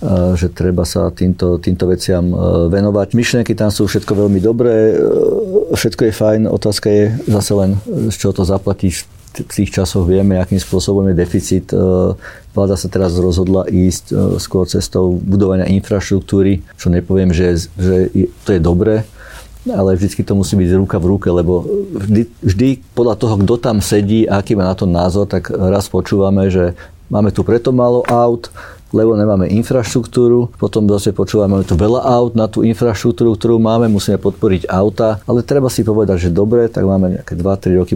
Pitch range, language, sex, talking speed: 95-110 Hz, Slovak, male, 170 wpm